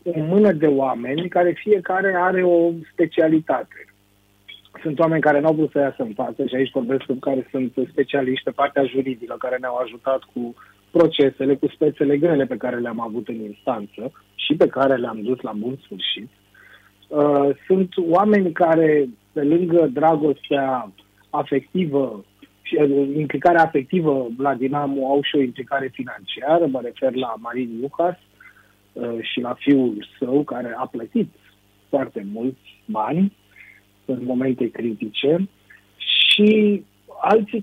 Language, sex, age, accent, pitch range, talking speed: Romanian, male, 30-49, native, 130-175 Hz, 140 wpm